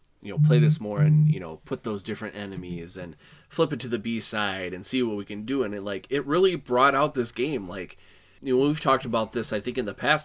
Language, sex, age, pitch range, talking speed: English, male, 20-39, 105-145 Hz, 275 wpm